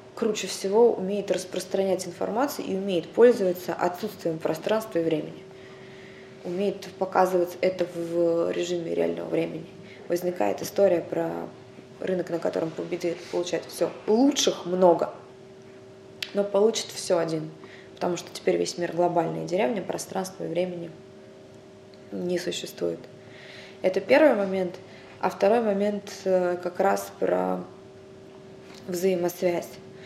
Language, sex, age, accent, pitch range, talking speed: Russian, female, 20-39, native, 165-190 Hz, 115 wpm